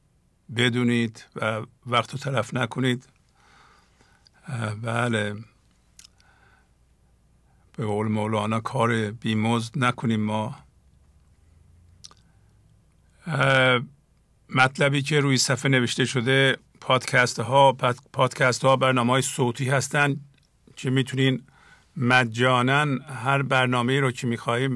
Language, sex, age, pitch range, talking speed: English, male, 50-69, 115-135 Hz, 85 wpm